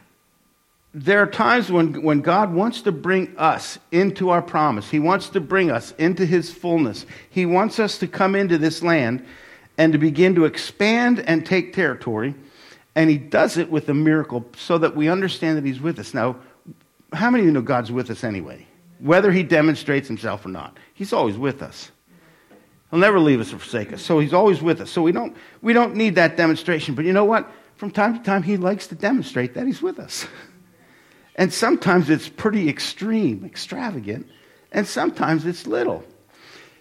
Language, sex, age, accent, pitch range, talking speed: English, male, 50-69, American, 145-200 Hz, 190 wpm